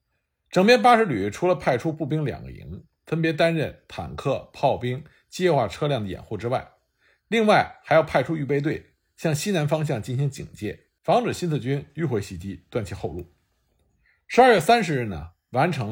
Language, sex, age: Chinese, male, 50-69